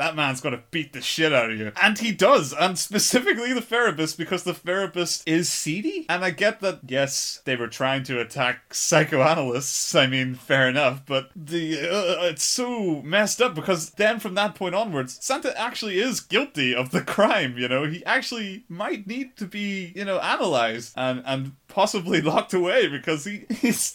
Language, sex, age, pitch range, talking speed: English, male, 30-49, 125-195 Hz, 190 wpm